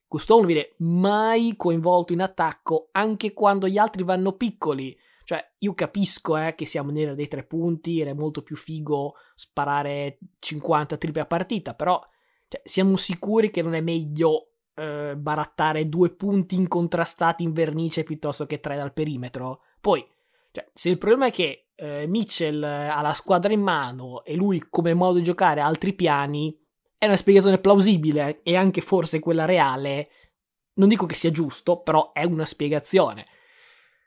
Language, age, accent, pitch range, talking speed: Italian, 20-39, native, 155-190 Hz, 165 wpm